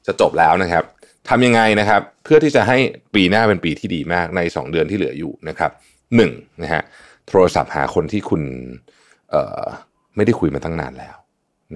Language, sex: Thai, male